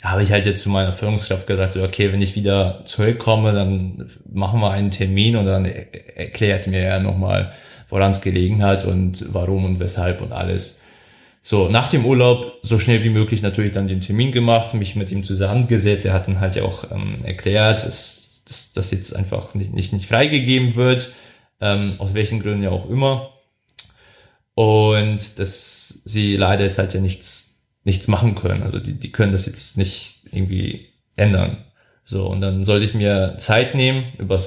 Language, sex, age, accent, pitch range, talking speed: German, male, 20-39, German, 95-115 Hz, 180 wpm